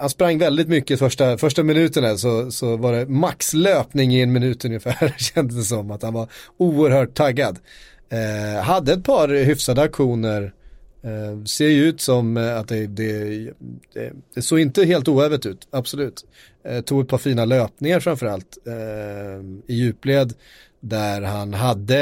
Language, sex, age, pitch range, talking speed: Swedish, male, 30-49, 105-135 Hz, 155 wpm